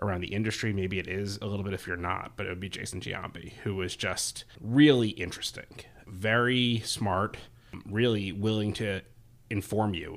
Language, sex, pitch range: English, male, 95-115 Hz